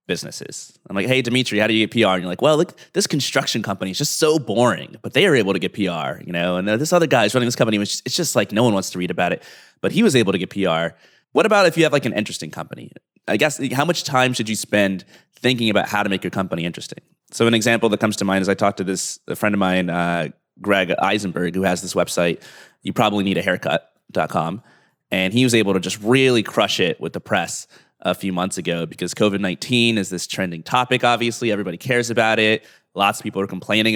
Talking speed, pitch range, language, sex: 255 wpm, 95-120 Hz, English, male